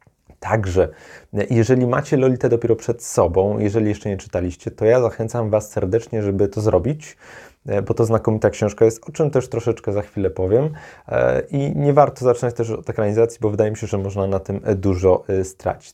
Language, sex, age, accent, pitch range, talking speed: Polish, male, 20-39, native, 100-120 Hz, 180 wpm